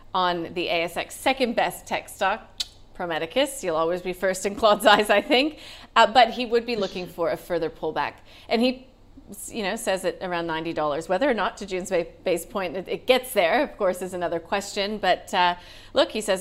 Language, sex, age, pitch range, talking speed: English, female, 30-49, 170-220 Hz, 200 wpm